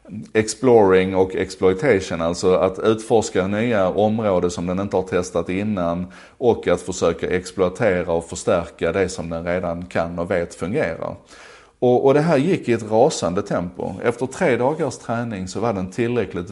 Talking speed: 165 wpm